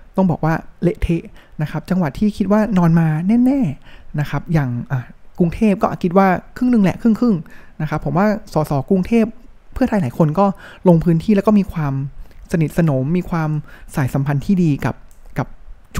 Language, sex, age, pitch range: Thai, male, 20-39, 135-185 Hz